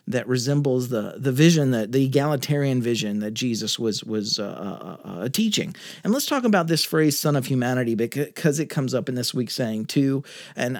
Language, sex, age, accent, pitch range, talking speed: English, male, 40-59, American, 120-155 Hz, 200 wpm